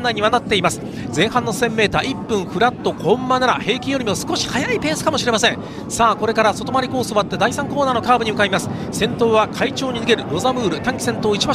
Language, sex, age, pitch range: Japanese, male, 40-59, 225-285 Hz